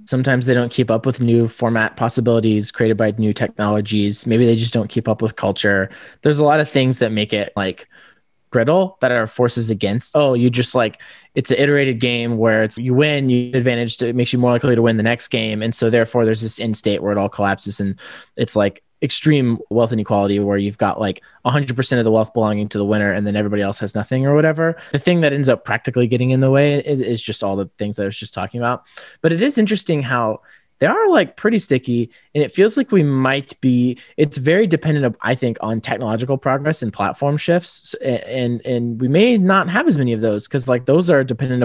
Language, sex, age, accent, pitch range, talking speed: English, male, 20-39, American, 110-145 Hz, 235 wpm